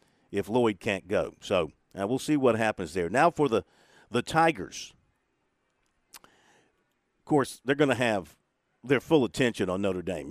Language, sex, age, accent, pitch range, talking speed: English, male, 50-69, American, 100-130 Hz, 165 wpm